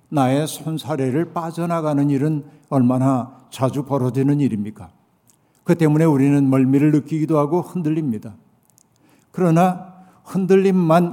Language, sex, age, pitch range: Korean, male, 60-79, 135-165 Hz